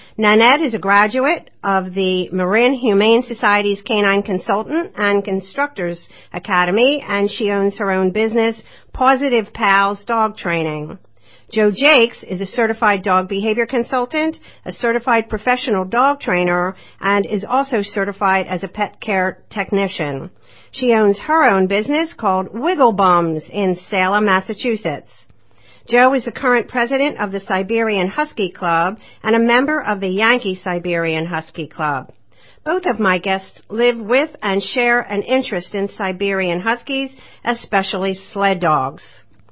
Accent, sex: American, female